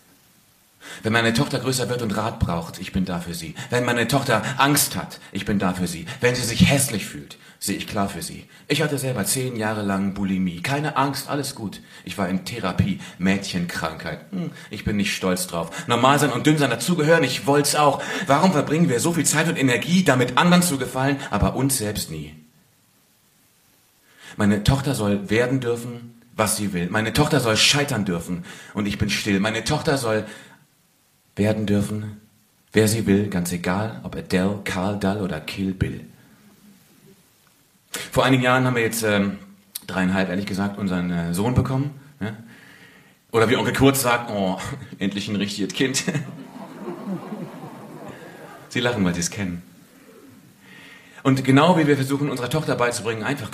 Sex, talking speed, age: male, 175 wpm, 40-59